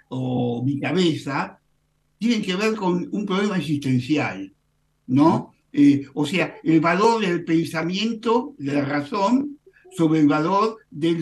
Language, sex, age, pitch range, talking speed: Spanish, male, 60-79, 145-200 Hz, 135 wpm